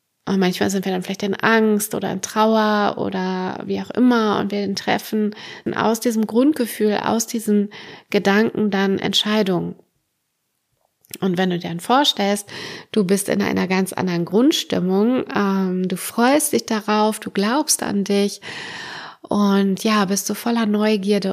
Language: German